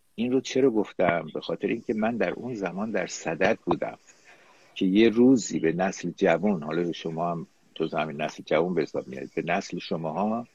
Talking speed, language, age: 180 wpm, Persian, 60-79